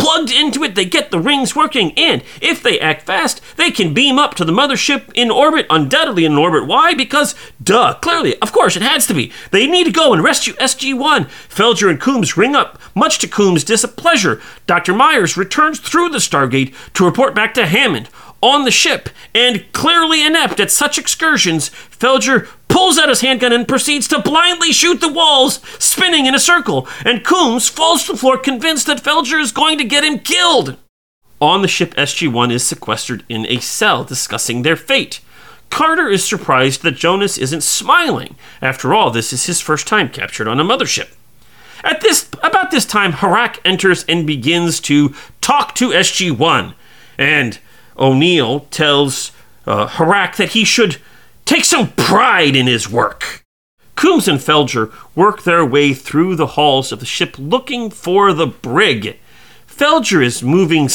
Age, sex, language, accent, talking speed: 40-59, male, English, American, 175 wpm